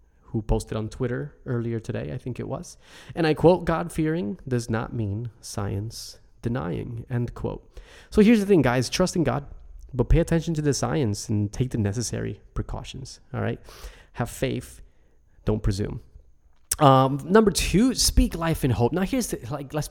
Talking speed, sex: 180 wpm, male